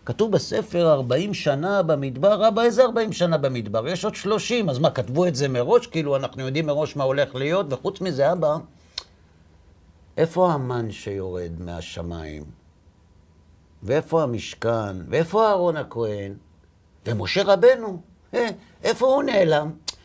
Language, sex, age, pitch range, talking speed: Hebrew, male, 60-79, 125-195 Hz, 130 wpm